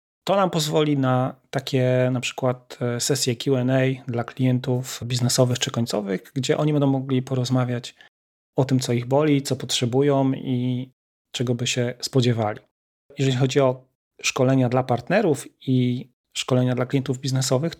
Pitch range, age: 125-140 Hz, 30-49